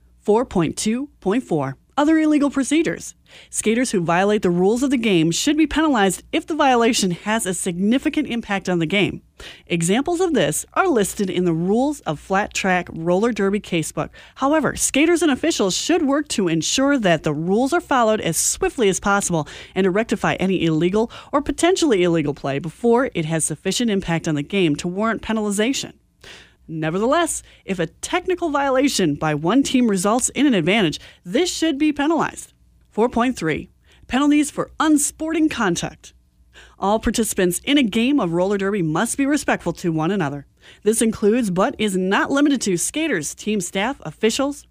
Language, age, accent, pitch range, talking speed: English, 30-49, American, 180-275 Hz, 160 wpm